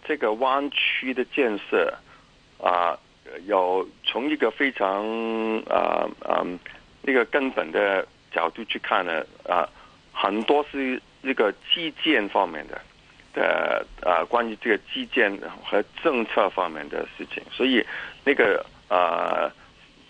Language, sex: Chinese, male